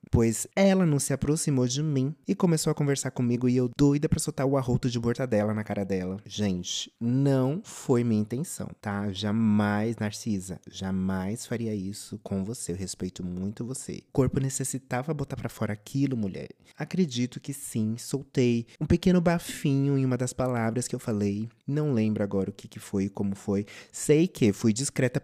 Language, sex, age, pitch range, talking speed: Portuguese, male, 20-39, 105-145 Hz, 185 wpm